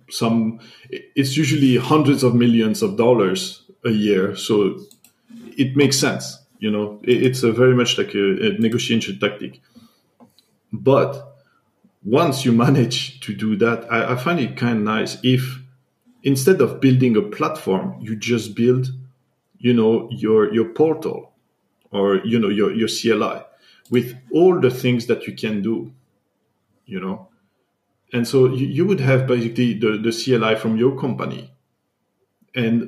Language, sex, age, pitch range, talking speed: English, male, 40-59, 110-130 Hz, 145 wpm